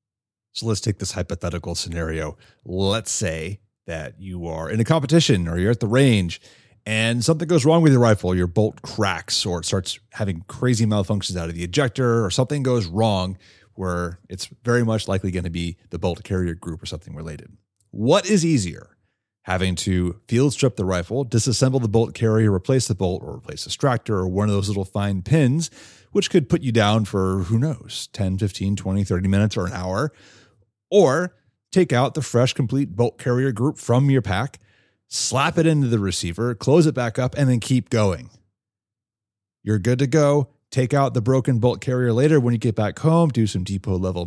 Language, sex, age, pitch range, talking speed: English, male, 30-49, 95-125 Hz, 195 wpm